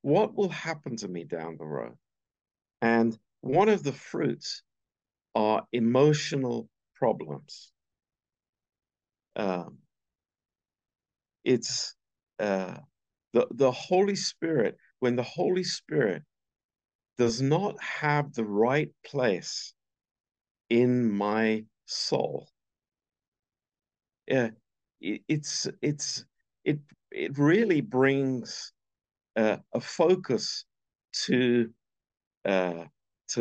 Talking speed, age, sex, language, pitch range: 90 wpm, 50-69, male, Romanian, 115-150 Hz